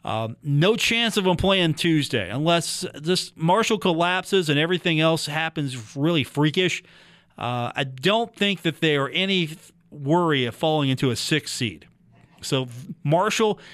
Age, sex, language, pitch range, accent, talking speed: 40-59, male, English, 120-170 Hz, American, 150 wpm